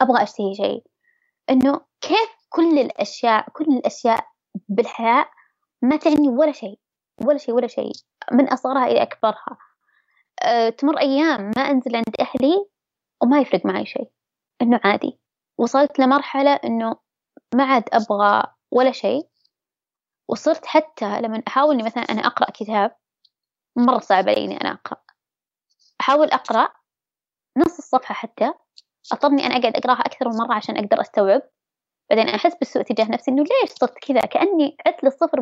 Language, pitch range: Arabic, 235-310 Hz